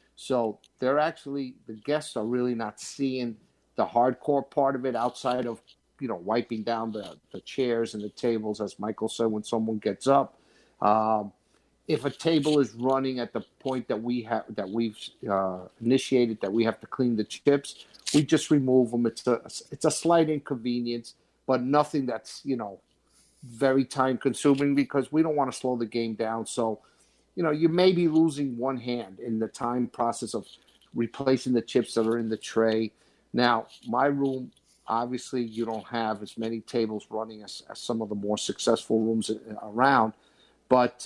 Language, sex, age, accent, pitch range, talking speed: English, male, 50-69, American, 110-135 Hz, 185 wpm